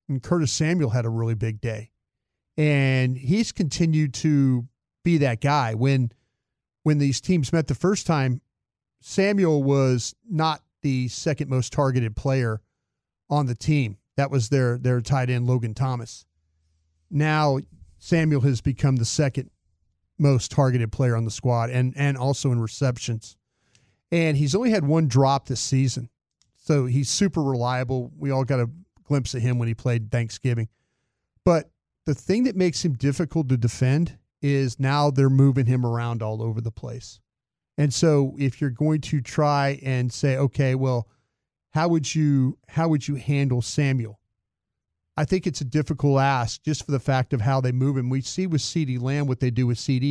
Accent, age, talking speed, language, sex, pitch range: American, 40-59, 170 wpm, English, male, 120-145 Hz